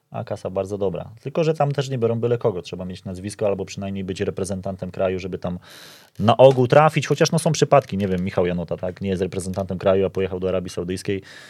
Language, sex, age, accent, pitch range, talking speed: Polish, male, 20-39, native, 95-105 Hz, 225 wpm